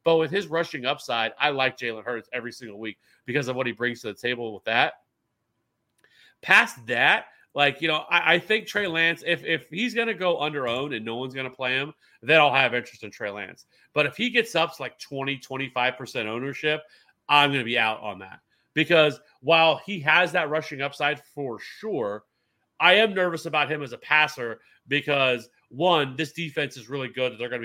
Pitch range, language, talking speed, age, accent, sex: 120-165 Hz, English, 215 wpm, 30-49, American, male